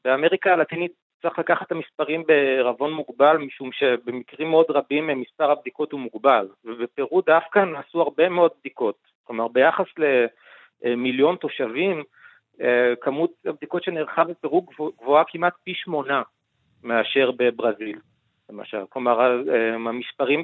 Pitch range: 130-170 Hz